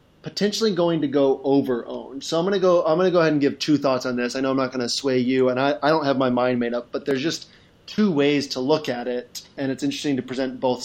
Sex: male